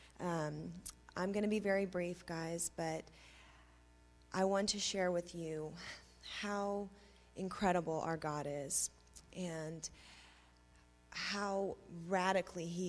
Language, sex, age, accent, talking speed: English, female, 30-49, American, 110 wpm